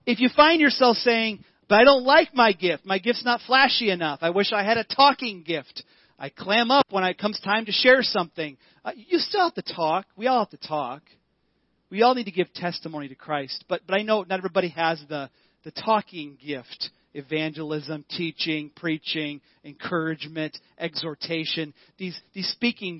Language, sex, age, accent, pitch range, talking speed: English, male, 40-59, American, 150-210 Hz, 185 wpm